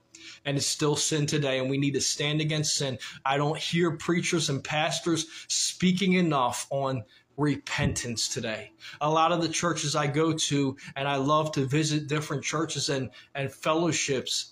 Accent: American